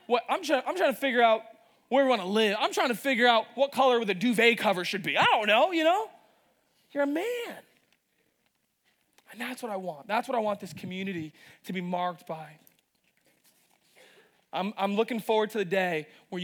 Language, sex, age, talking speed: English, male, 20-39, 205 wpm